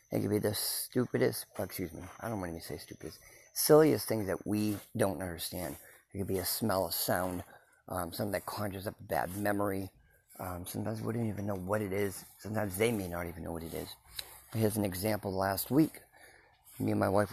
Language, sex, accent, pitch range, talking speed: English, male, American, 90-105 Hz, 210 wpm